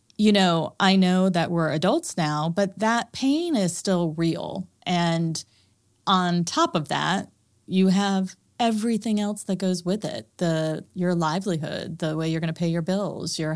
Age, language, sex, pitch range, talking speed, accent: 30-49, English, female, 155-190 Hz, 175 wpm, American